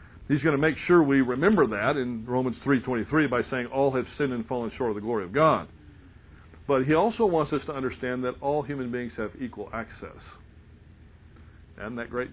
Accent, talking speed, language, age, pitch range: American, 200 wpm, English, 50-69, 100-140 Hz